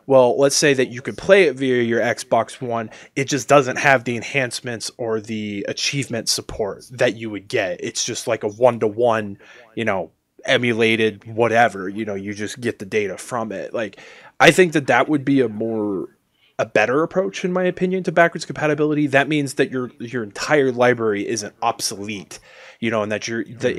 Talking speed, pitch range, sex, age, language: 195 wpm, 110-135 Hz, male, 20-39, English